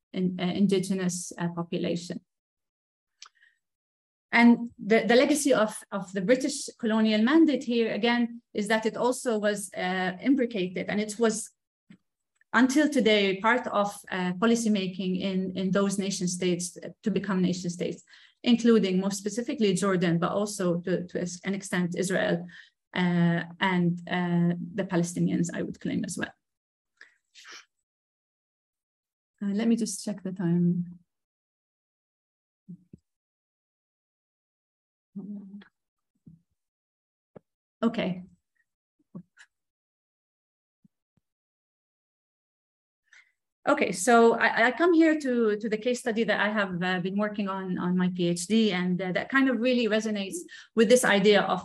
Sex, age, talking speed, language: female, 30-49, 115 wpm, English